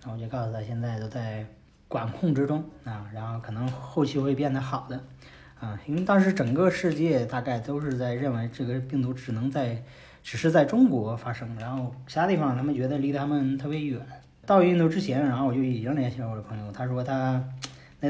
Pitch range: 115-140 Hz